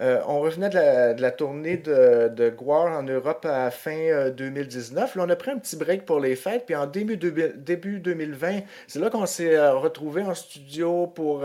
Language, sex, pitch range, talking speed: French, male, 130-175 Hz, 220 wpm